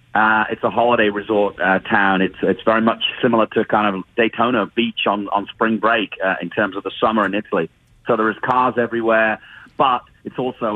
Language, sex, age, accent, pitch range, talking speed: English, male, 30-49, British, 105-125 Hz, 205 wpm